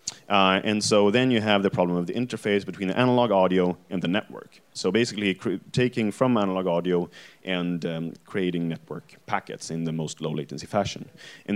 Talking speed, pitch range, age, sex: 190 wpm, 90-105 Hz, 30-49, male